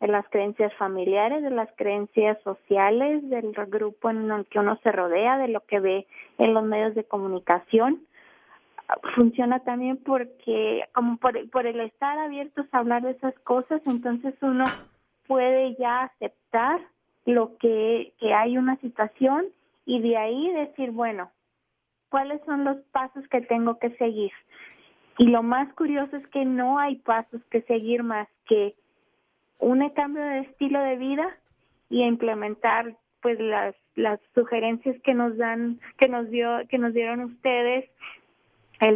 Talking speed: 150 wpm